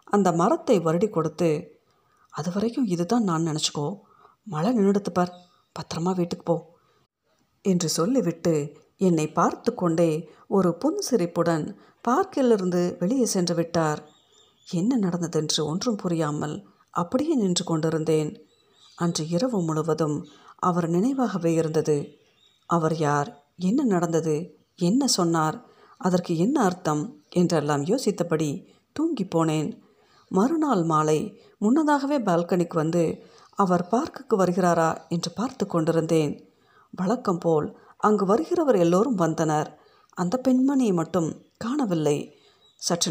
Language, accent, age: Tamil, native, 50-69